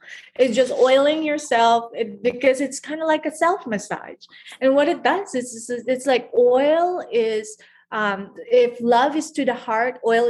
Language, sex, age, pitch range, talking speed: English, female, 30-49, 215-270 Hz, 165 wpm